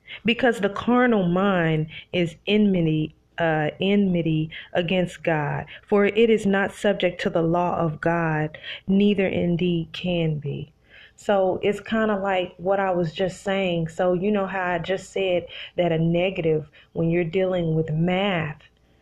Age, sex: 30-49, female